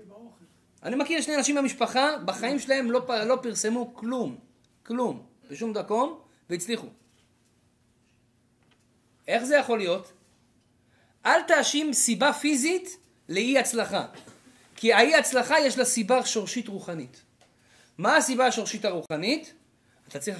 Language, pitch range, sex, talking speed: Hebrew, 135-225 Hz, male, 110 wpm